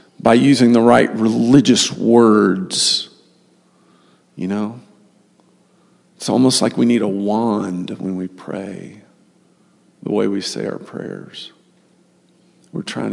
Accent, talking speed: American, 120 wpm